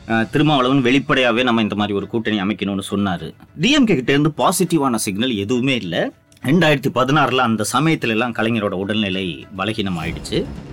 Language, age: Tamil, 30-49